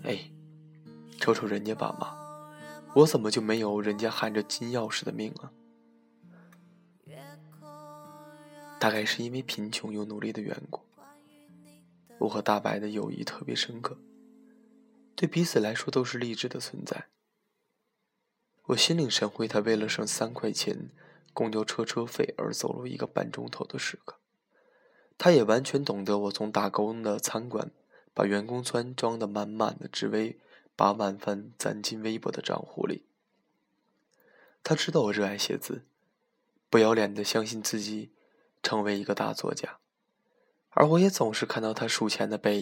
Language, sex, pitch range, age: Chinese, male, 105-150 Hz, 20-39